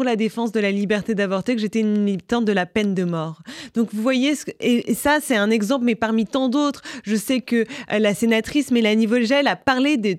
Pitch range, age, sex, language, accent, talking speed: 205-245 Hz, 20-39, female, French, French, 220 wpm